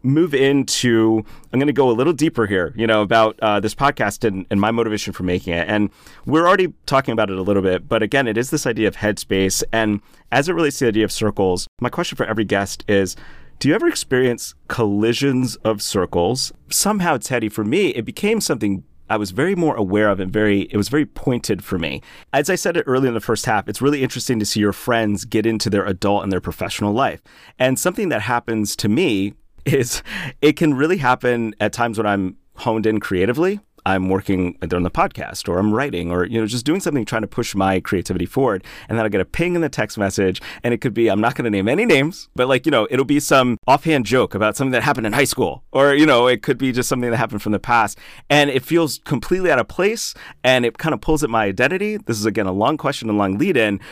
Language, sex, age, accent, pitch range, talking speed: English, male, 30-49, American, 105-135 Hz, 245 wpm